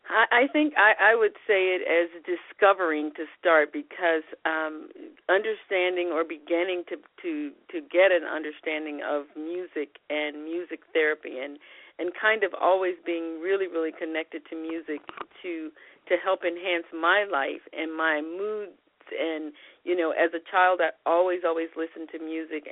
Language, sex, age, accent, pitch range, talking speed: English, female, 50-69, American, 155-180 Hz, 160 wpm